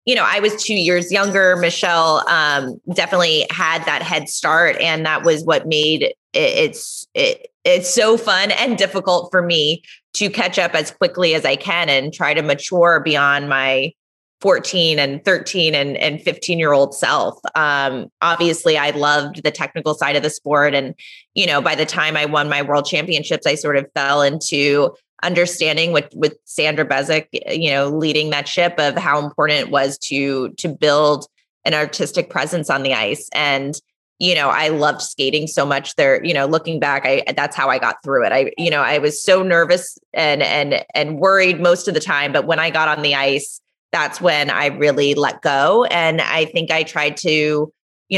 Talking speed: 195 wpm